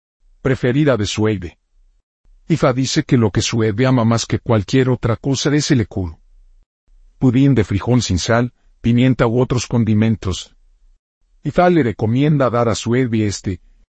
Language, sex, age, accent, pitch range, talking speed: Spanish, male, 50-69, Mexican, 90-135 Hz, 145 wpm